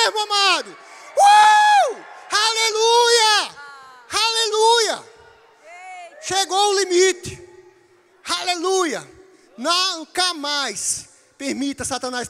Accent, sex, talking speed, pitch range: Brazilian, male, 55 wpm, 225-370 Hz